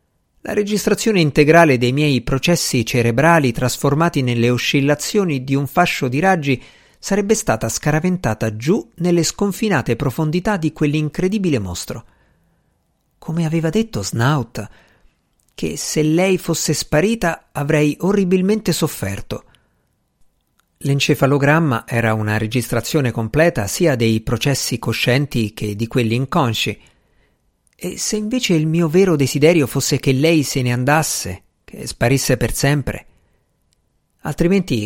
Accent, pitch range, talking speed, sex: native, 115-170 Hz, 115 wpm, male